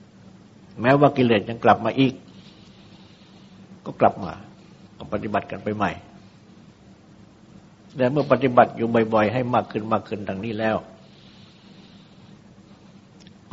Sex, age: male, 60-79